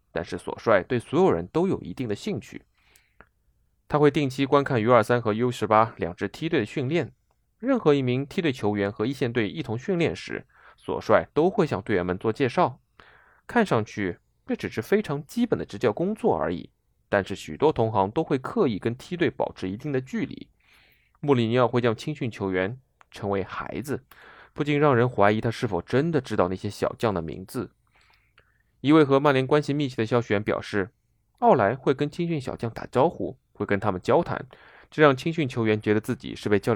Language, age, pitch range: Chinese, 20-39, 105-140 Hz